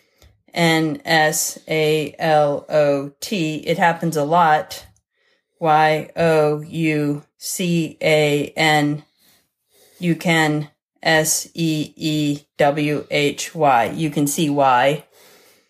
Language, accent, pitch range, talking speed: English, American, 150-165 Hz, 105 wpm